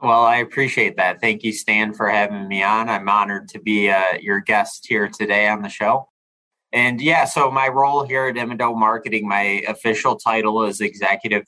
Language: English